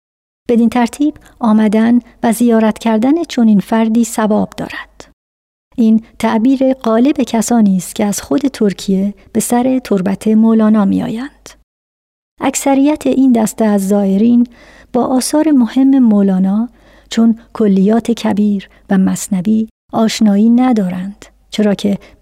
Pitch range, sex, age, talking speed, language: 205-245 Hz, male, 50-69, 115 wpm, Persian